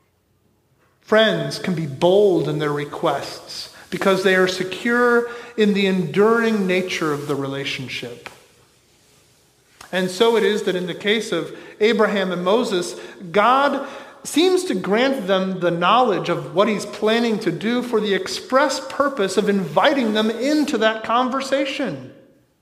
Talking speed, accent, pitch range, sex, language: 140 wpm, American, 175-235 Hz, male, English